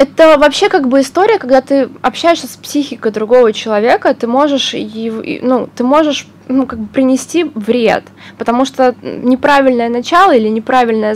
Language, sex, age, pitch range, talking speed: Russian, female, 20-39, 210-270 Hz, 150 wpm